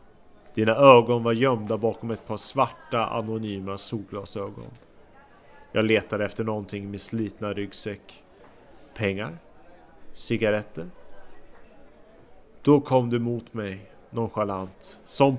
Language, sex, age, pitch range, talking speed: English, male, 30-49, 100-120 Hz, 105 wpm